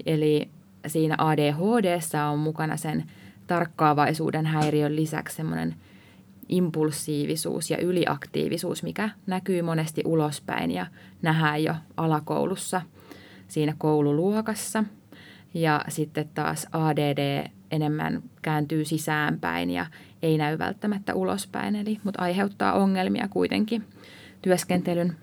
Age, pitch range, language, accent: 20-39, 150-195 Hz, Finnish, native